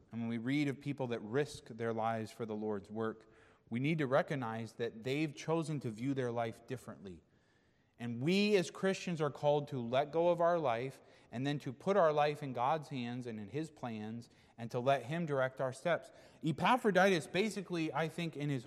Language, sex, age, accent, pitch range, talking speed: English, male, 30-49, American, 130-190 Hz, 205 wpm